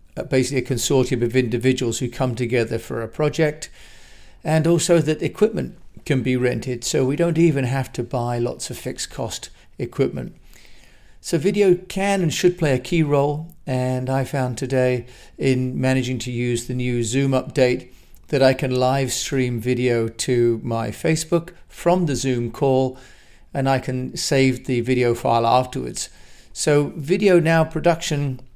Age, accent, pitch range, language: 40-59, British, 125-155 Hz, English